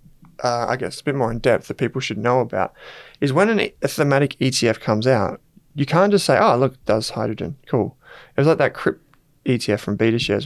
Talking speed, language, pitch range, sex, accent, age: 210 wpm, English, 115-140 Hz, male, Australian, 20-39